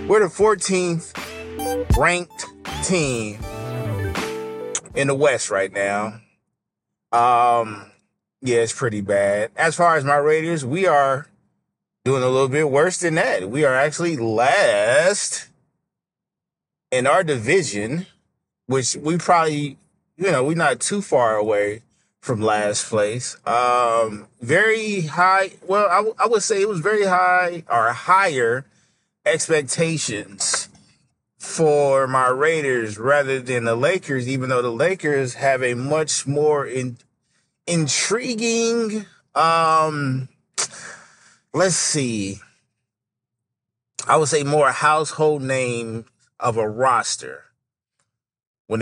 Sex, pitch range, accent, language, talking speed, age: male, 110-160 Hz, American, English, 115 wpm, 30-49